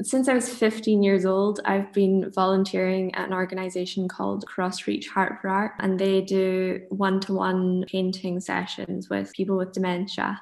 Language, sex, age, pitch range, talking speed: English, female, 10-29, 185-200 Hz, 155 wpm